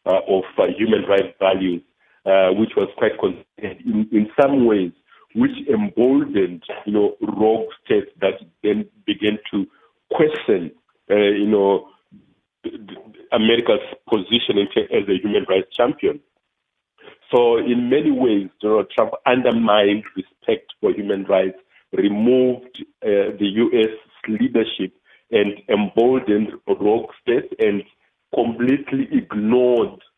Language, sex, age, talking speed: English, male, 50-69, 115 wpm